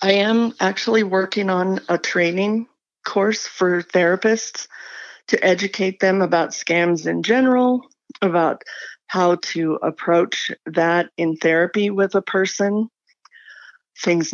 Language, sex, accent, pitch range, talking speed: English, female, American, 175-215 Hz, 115 wpm